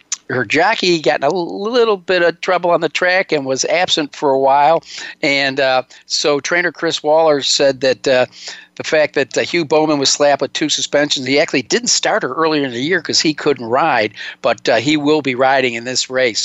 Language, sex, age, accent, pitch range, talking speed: English, male, 50-69, American, 125-155 Hz, 220 wpm